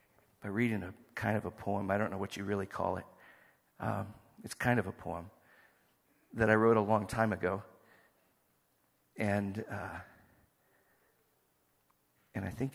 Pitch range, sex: 95-115 Hz, male